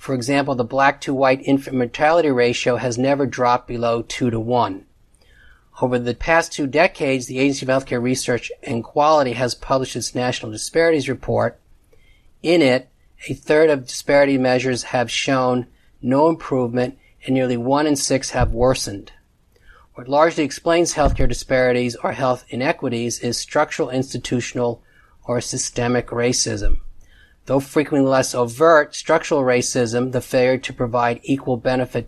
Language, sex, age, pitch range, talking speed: English, male, 40-59, 120-135 Hz, 140 wpm